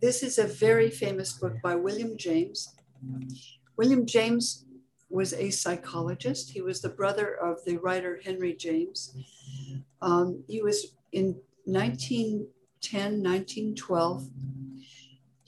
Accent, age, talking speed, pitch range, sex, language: American, 60-79, 110 wpm, 130-185 Hz, female, English